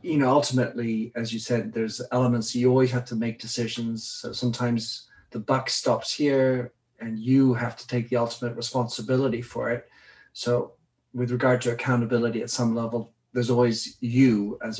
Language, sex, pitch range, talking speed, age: English, male, 115-130 Hz, 170 wpm, 40-59